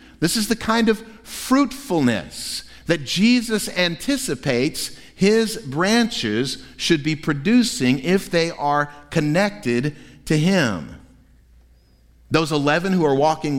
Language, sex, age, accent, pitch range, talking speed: English, male, 50-69, American, 120-175 Hz, 110 wpm